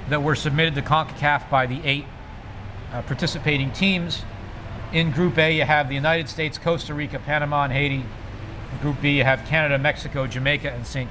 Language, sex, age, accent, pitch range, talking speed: English, male, 50-69, American, 115-150 Hz, 185 wpm